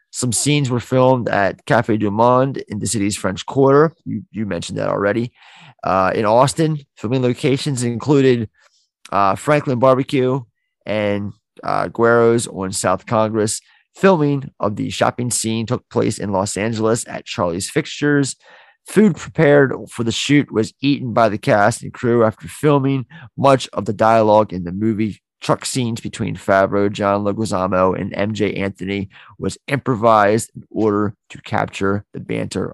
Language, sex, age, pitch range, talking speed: English, male, 30-49, 105-135 Hz, 155 wpm